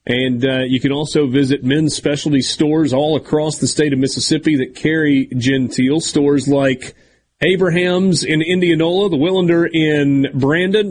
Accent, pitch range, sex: American, 135-165 Hz, male